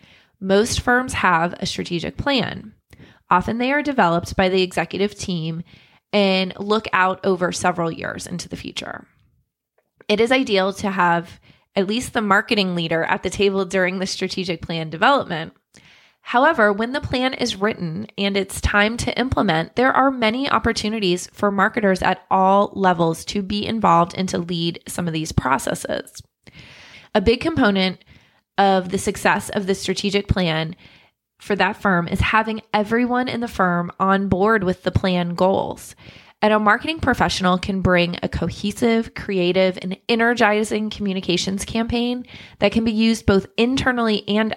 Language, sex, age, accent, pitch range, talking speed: English, female, 20-39, American, 185-220 Hz, 155 wpm